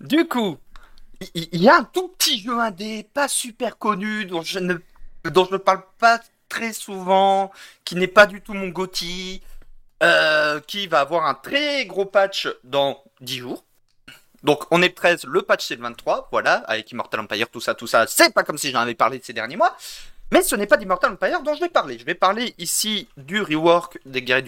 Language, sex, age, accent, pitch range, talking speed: French, male, 40-59, French, 160-235 Hz, 210 wpm